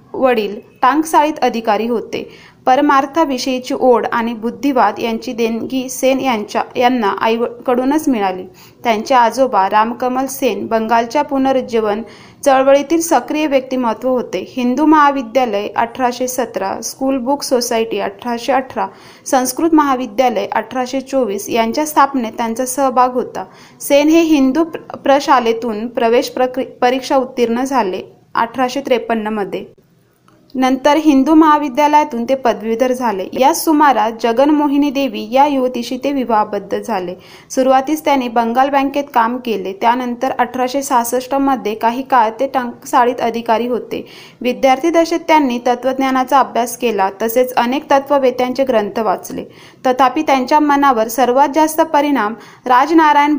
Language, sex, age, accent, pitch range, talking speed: Marathi, female, 20-39, native, 235-275 Hz, 115 wpm